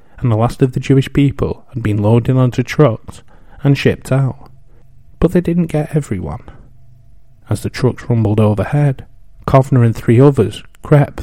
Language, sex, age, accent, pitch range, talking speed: English, male, 30-49, British, 105-125 Hz, 160 wpm